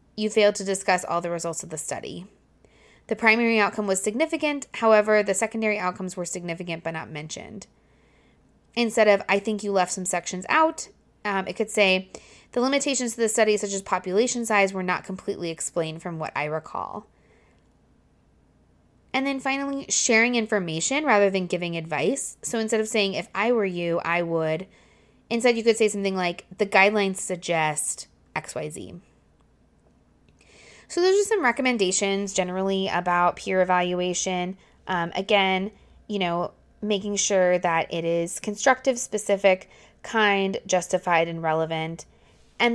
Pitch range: 180-225 Hz